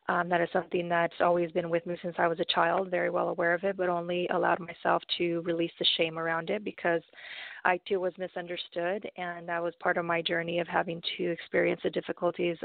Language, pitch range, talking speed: English, 170-180 Hz, 225 wpm